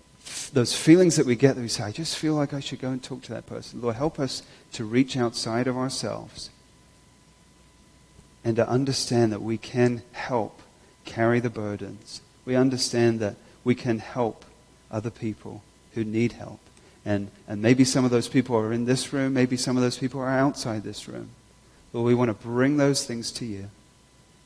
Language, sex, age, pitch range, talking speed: English, male, 40-59, 110-130 Hz, 190 wpm